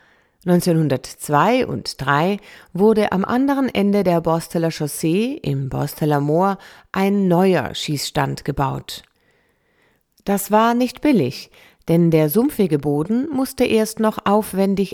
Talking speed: 115 wpm